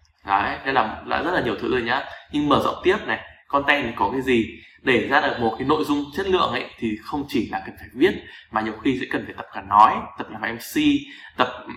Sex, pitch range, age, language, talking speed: male, 105-145 Hz, 20-39, Vietnamese, 255 wpm